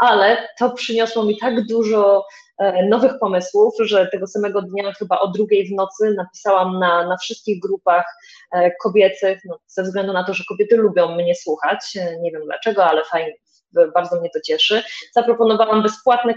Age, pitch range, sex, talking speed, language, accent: 20-39, 190-235 Hz, female, 160 wpm, Polish, native